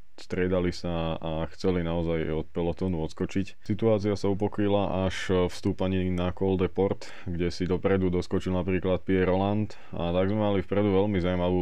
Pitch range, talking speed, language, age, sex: 85-95 Hz, 155 wpm, Slovak, 20-39, male